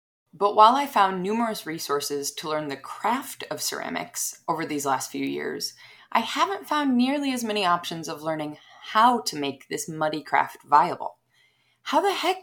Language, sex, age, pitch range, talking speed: English, female, 20-39, 155-245 Hz, 175 wpm